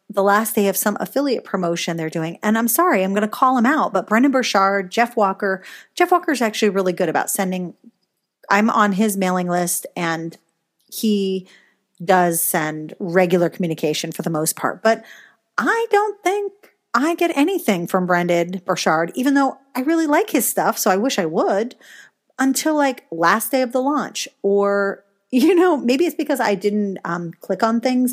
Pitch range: 180-235 Hz